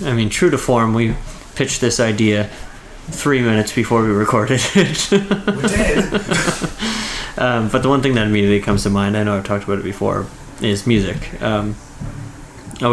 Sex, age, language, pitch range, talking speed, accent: male, 30-49, English, 105-135 Hz, 165 wpm, American